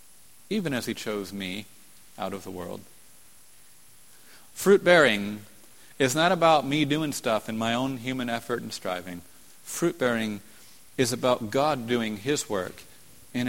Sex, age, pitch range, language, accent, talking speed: male, 40-59, 105-135 Hz, English, American, 140 wpm